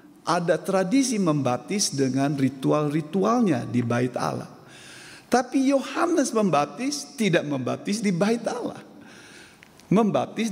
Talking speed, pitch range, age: 95 wpm, 145-235 Hz, 50-69